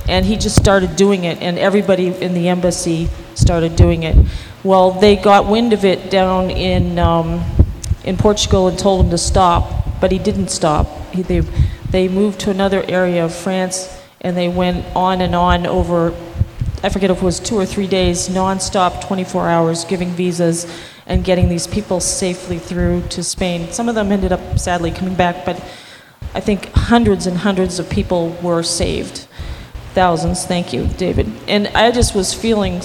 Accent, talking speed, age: American, 180 wpm, 40-59